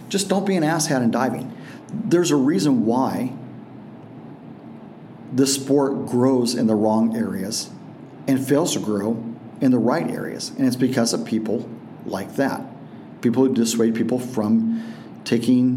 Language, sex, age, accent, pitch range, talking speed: English, male, 50-69, American, 110-130 Hz, 150 wpm